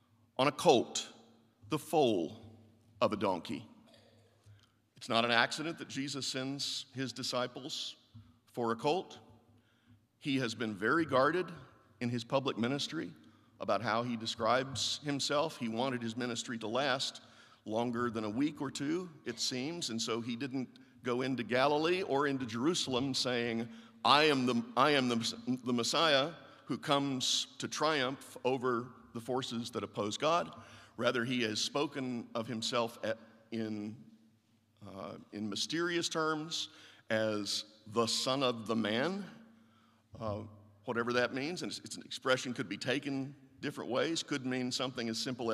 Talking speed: 150 wpm